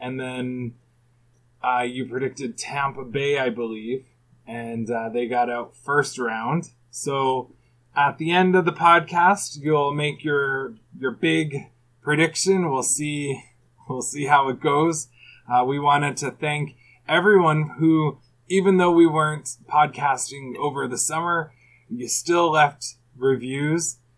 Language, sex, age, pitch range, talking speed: English, male, 20-39, 120-150 Hz, 135 wpm